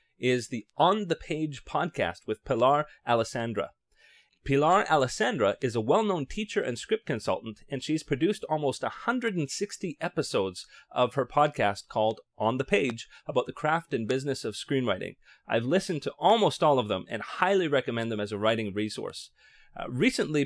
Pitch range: 115-160 Hz